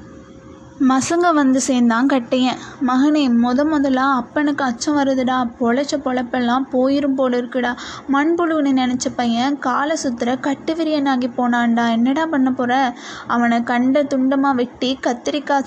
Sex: female